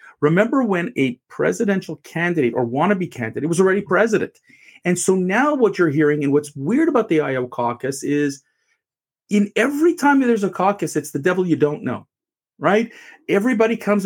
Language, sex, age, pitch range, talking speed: English, male, 40-59, 150-245 Hz, 170 wpm